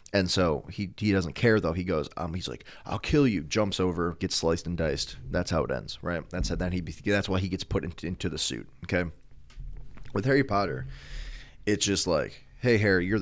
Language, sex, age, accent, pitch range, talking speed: English, male, 20-39, American, 95-130 Hz, 225 wpm